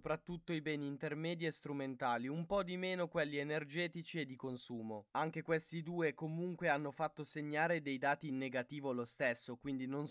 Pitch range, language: 135-170 Hz, Italian